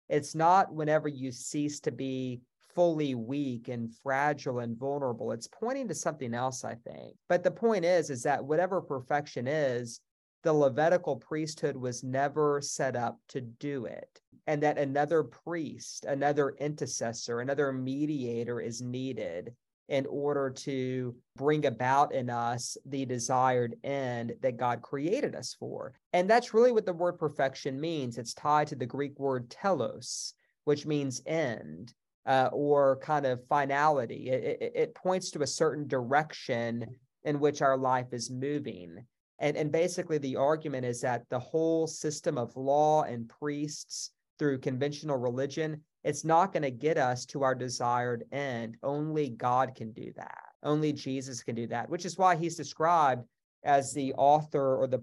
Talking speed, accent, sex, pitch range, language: 160 wpm, American, male, 125-155 Hz, English